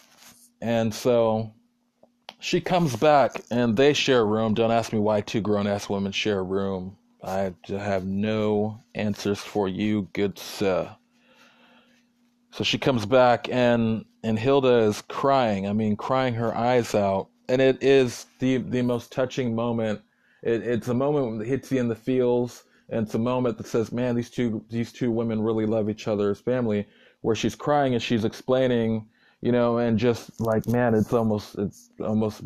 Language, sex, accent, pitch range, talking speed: English, male, American, 105-125 Hz, 175 wpm